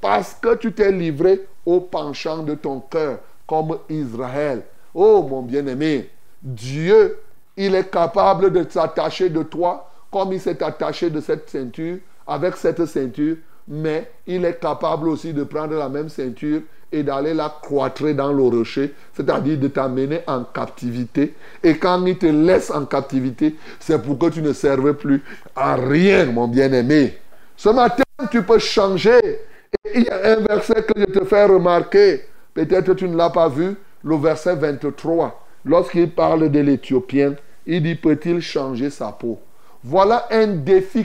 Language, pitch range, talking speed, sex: French, 150-220 Hz, 160 wpm, male